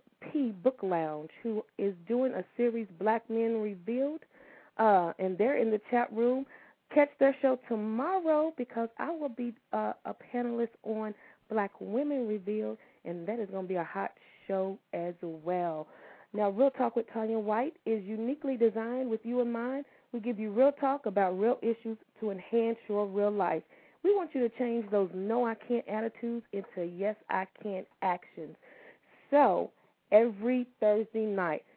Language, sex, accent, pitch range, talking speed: English, female, American, 195-250 Hz, 170 wpm